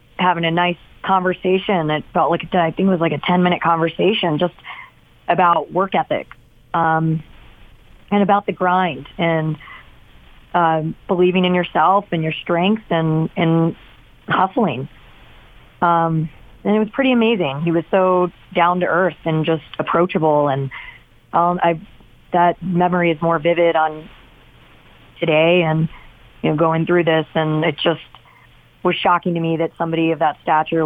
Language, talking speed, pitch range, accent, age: English, 155 wpm, 160-180 Hz, American, 40-59